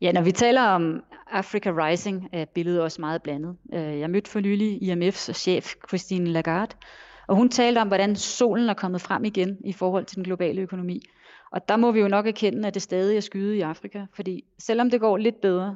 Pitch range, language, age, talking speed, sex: 180-210 Hz, Danish, 30-49, 215 wpm, female